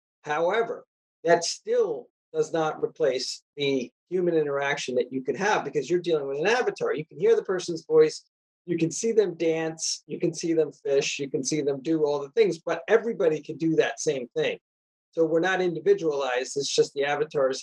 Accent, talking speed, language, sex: American, 195 wpm, English, male